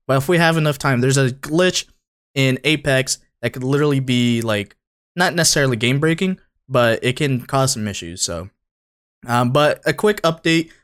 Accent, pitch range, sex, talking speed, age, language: American, 110-140 Hz, male, 170 wpm, 20-39, English